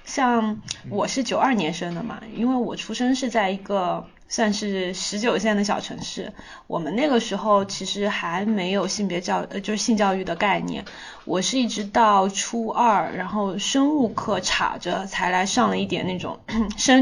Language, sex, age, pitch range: Chinese, female, 20-39, 185-230 Hz